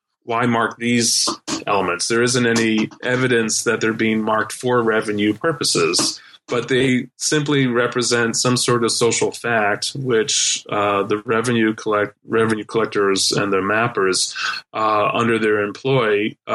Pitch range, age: 110-130 Hz, 20-39